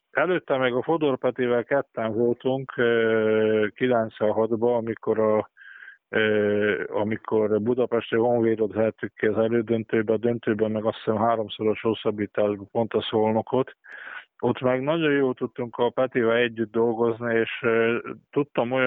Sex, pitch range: male, 110-125 Hz